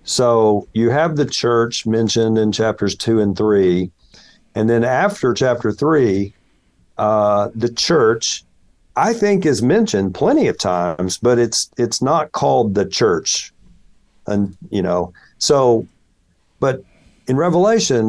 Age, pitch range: 50-69, 100-125 Hz